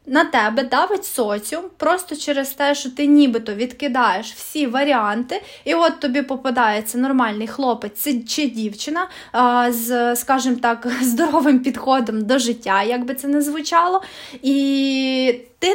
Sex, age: female, 20-39